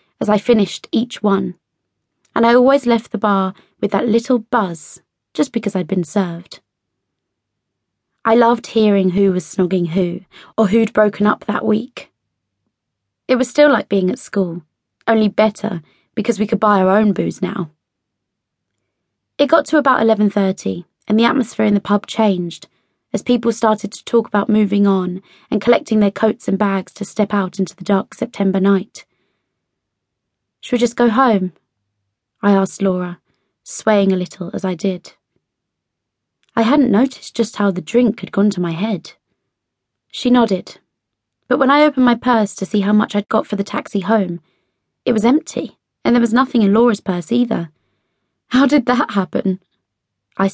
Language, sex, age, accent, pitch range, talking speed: English, female, 20-39, British, 185-230 Hz, 170 wpm